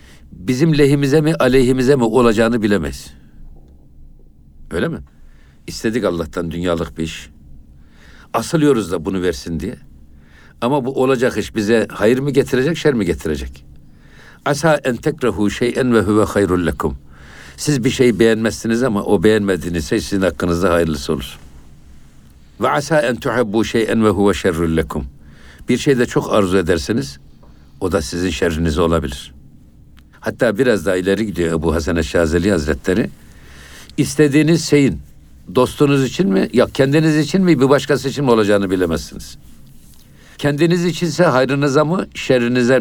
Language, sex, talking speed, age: Turkish, male, 140 wpm, 60-79